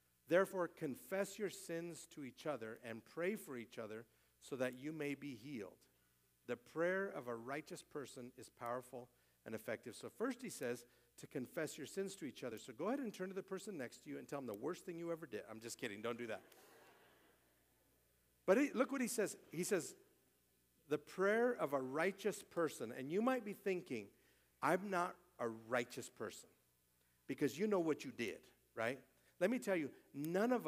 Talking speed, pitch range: 200 wpm, 120-195 Hz